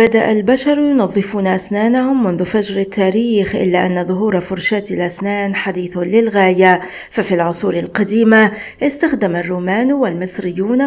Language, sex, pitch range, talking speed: Arabic, female, 190-235 Hz, 110 wpm